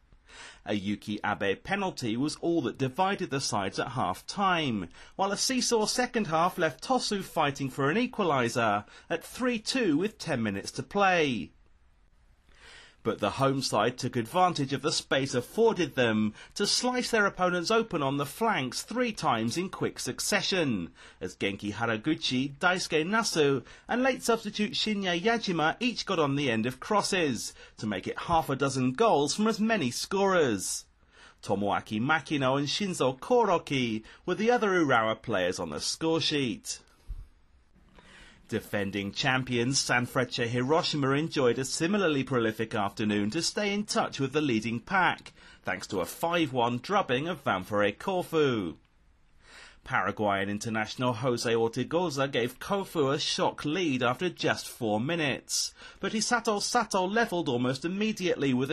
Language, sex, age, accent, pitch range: Japanese, male, 30-49, British, 120-190 Hz